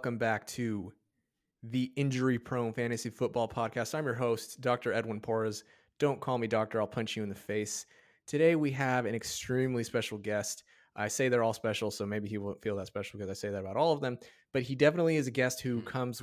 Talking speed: 220 wpm